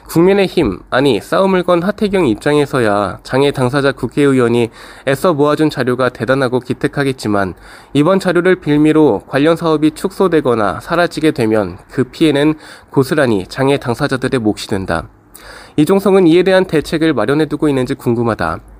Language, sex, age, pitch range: Korean, male, 20-39, 125-165 Hz